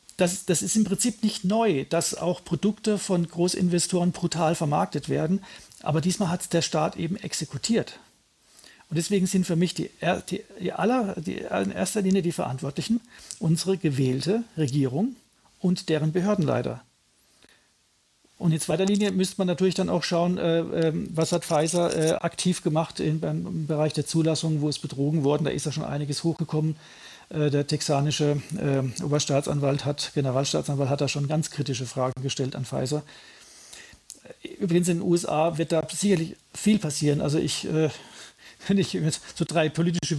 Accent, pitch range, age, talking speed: German, 150-180 Hz, 50-69, 150 wpm